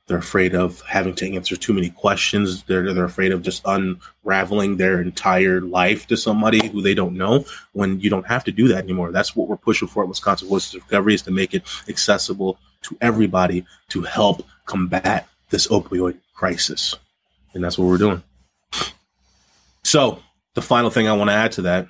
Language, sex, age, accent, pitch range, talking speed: English, male, 20-39, American, 90-105 Hz, 190 wpm